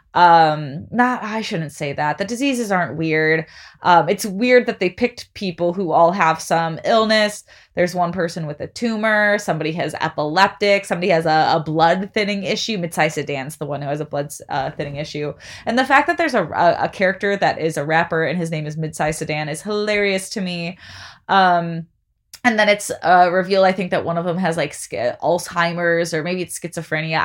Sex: female